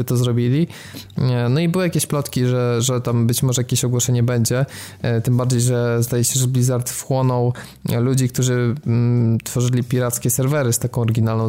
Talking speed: 160 wpm